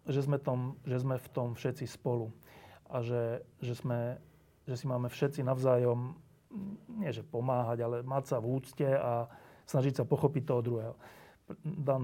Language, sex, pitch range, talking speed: Slovak, male, 130-155 Hz, 165 wpm